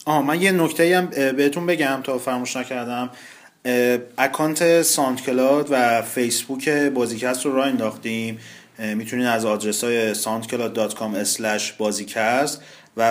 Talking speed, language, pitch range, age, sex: 110 wpm, Persian, 110-130 Hz, 30-49, male